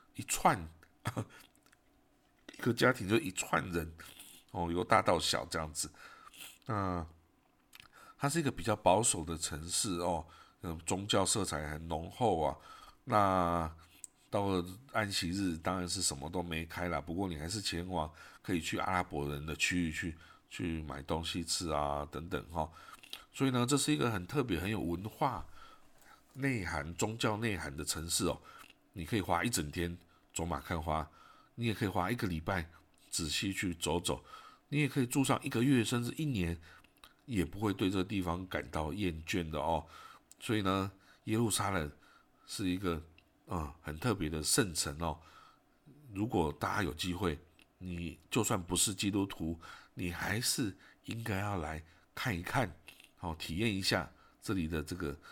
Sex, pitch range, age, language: male, 80-100 Hz, 50-69, Chinese